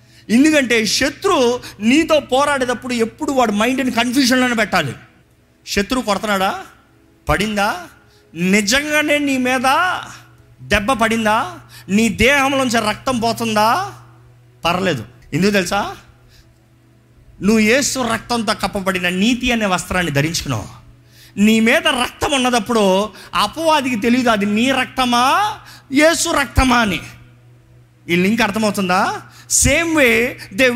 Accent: native